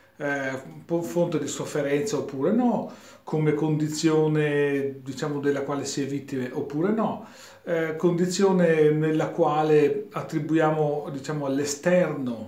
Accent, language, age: native, Italian, 40-59